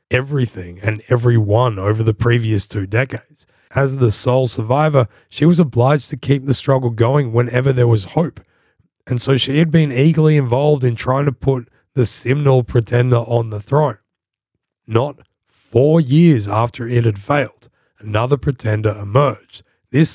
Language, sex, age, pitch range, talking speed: English, male, 20-39, 105-130 Hz, 155 wpm